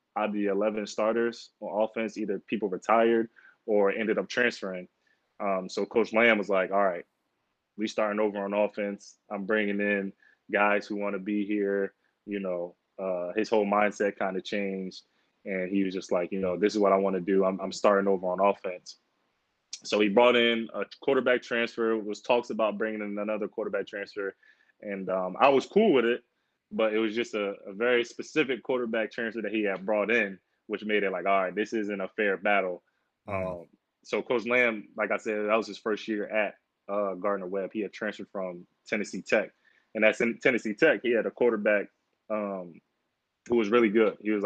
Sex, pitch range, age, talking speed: male, 100-110 Hz, 20-39, 200 wpm